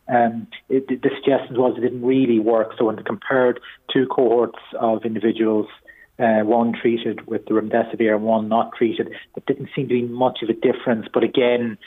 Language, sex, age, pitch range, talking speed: English, male, 30-49, 110-130 Hz, 195 wpm